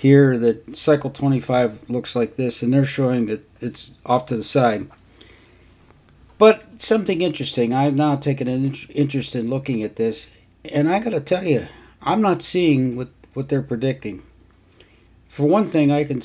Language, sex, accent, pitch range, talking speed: English, male, American, 110-140 Hz, 165 wpm